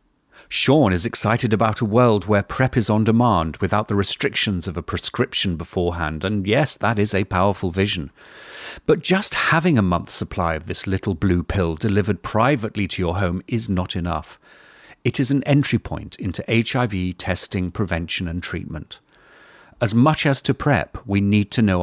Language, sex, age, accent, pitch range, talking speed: English, male, 40-59, British, 90-120 Hz, 175 wpm